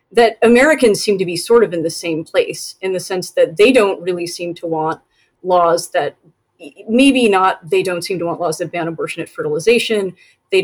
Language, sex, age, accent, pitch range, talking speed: English, female, 30-49, American, 170-230 Hz, 210 wpm